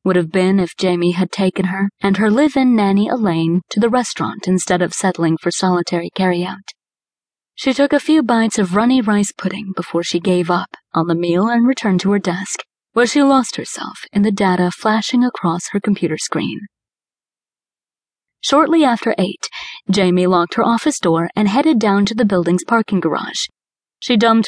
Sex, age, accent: female, 30-49, American